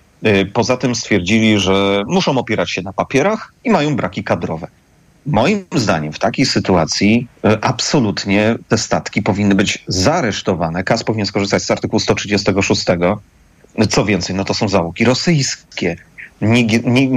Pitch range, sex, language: 100-120 Hz, male, Polish